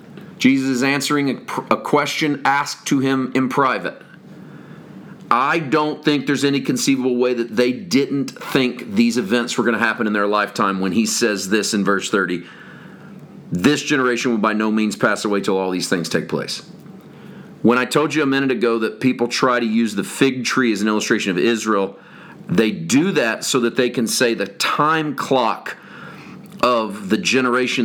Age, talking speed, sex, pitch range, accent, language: 40-59, 185 wpm, male, 110-135 Hz, American, English